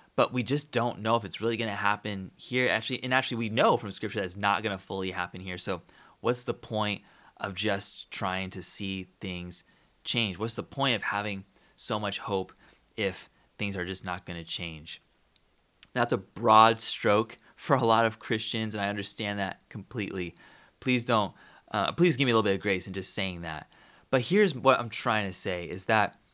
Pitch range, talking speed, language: 100-125 Hz, 210 wpm, English